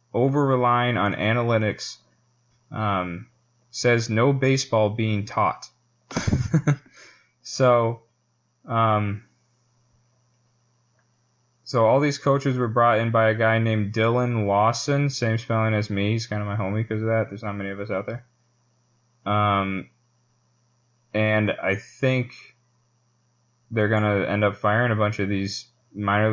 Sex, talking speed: male, 130 wpm